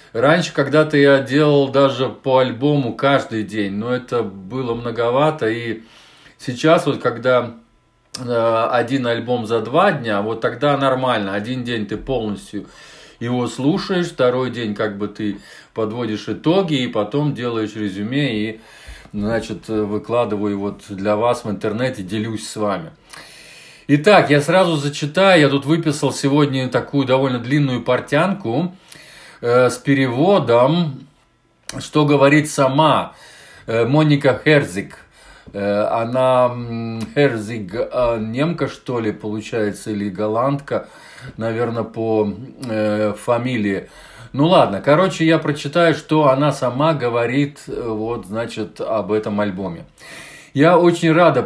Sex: male